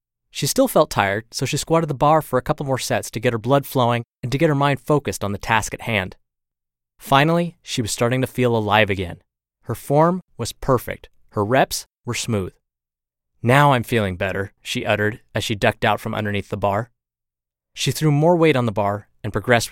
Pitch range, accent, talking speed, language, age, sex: 100-145 Hz, American, 210 wpm, English, 20-39, male